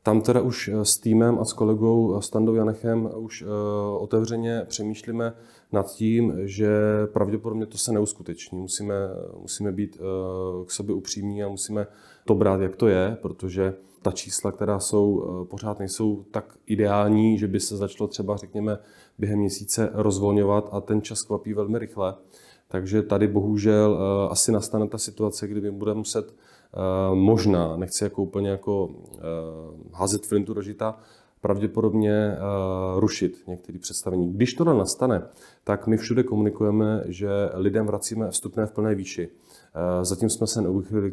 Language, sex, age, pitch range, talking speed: Czech, male, 30-49, 95-110 Hz, 155 wpm